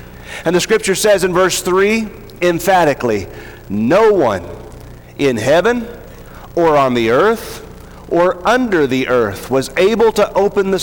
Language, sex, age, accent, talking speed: English, male, 40-59, American, 140 wpm